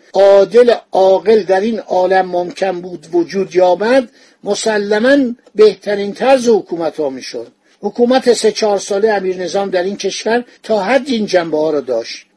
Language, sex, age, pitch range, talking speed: Persian, male, 60-79, 180-225 Hz, 145 wpm